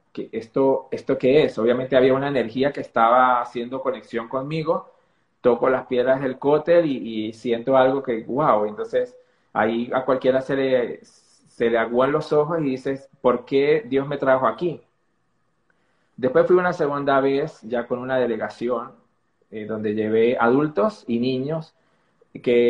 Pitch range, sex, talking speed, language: 120-145 Hz, male, 160 wpm, Spanish